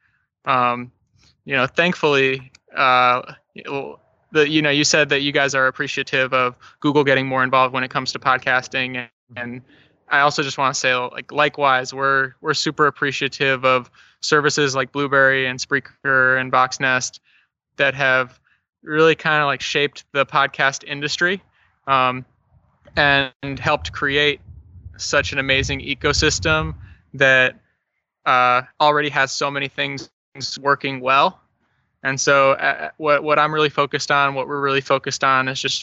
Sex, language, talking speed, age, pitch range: male, English, 150 wpm, 20-39, 130-145 Hz